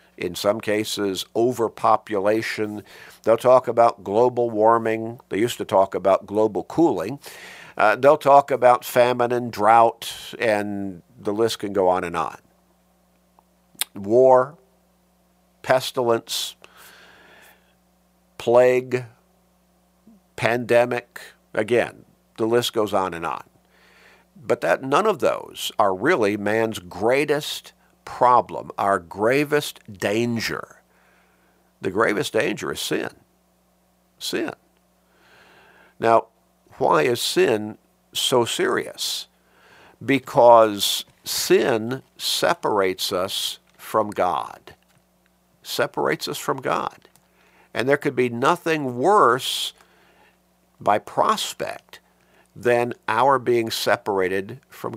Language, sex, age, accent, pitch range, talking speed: English, male, 50-69, American, 100-125 Hz, 100 wpm